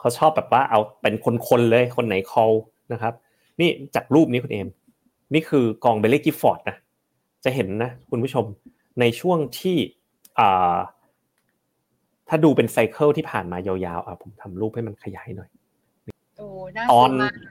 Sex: male